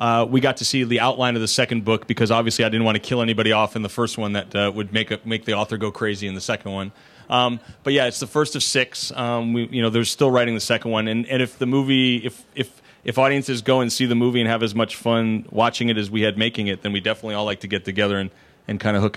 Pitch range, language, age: 100-115 Hz, English, 30-49